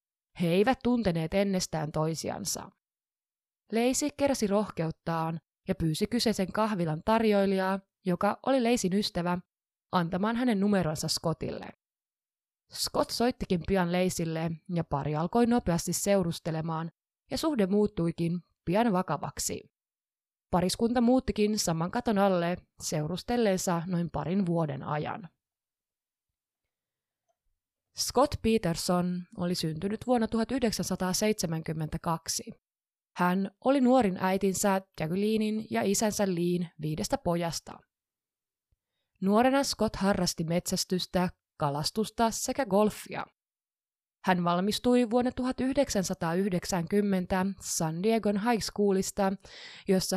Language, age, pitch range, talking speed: Finnish, 20-39, 170-220 Hz, 90 wpm